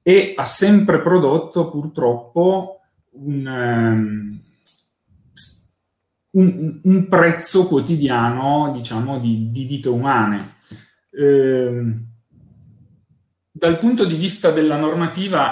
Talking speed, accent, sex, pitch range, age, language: 90 wpm, native, male, 120-160 Hz, 30-49, Italian